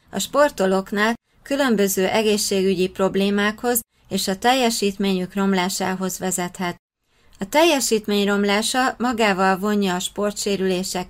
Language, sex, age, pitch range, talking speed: Hungarian, female, 20-39, 190-225 Hz, 90 wpm